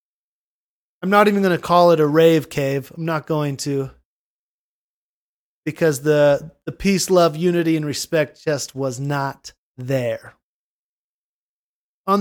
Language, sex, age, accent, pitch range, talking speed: English, male, 30-49, American, 155-190 Hz, 135 wpm